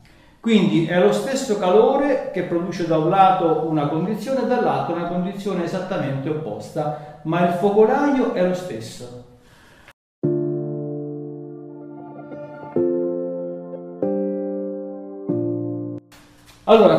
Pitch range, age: 130-190 Hz, 40-59